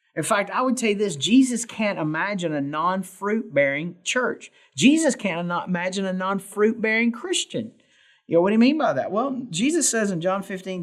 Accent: American